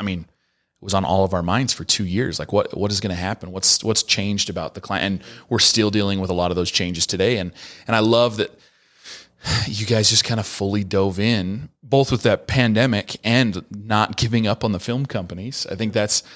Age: 30-49